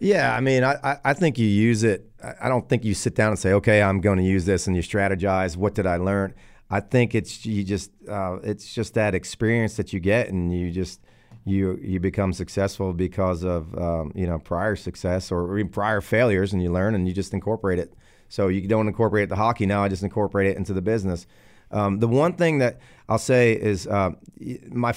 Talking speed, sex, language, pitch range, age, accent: 225 wpm, male, English, 90-110 Hz, 40-59, American